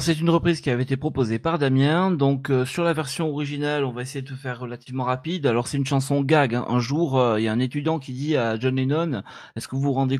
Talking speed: 275 wpm